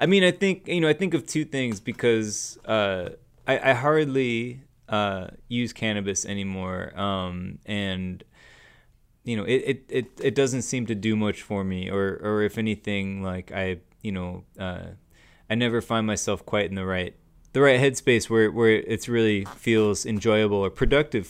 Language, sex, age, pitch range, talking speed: English, male, 20-39, 100-125 Hz, 180 wpm